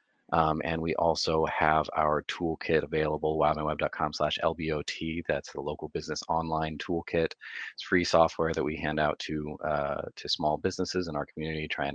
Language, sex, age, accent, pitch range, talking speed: English, male, 30-49, American, 75-85 Hz, 160 wpm